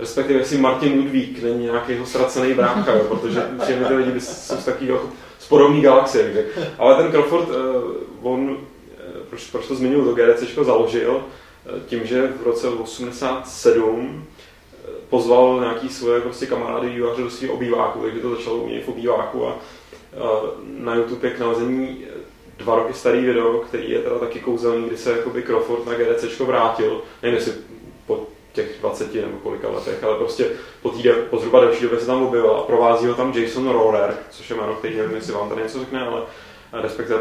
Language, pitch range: Czech, 115-135 Hz